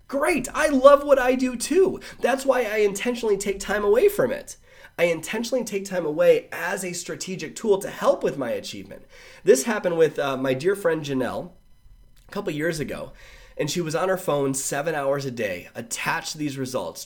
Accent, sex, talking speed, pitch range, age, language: American, male, 195 wpm, 140-215 Hz, 30-49, English